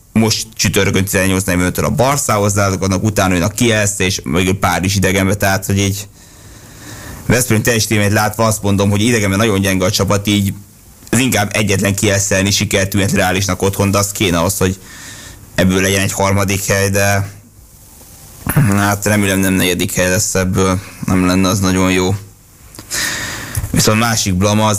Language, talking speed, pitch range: Hungarian, 150 wpm, 95-105 Hz